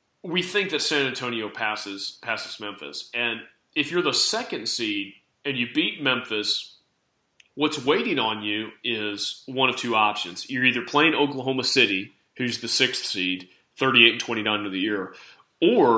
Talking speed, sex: 155 wpm, male